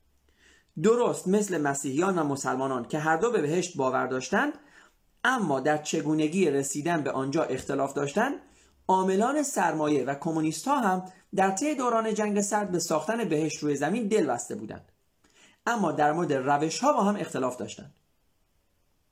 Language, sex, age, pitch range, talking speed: Persian, male, 40-59, 140-210 Hz, 140 wpm